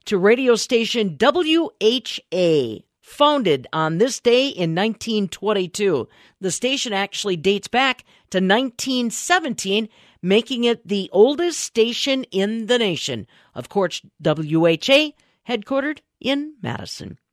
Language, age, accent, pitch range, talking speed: English, 50-69, American, 180-260 Hz, 105 wpm